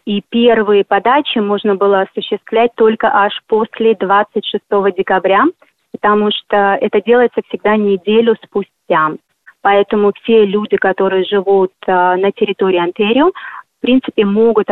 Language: Russian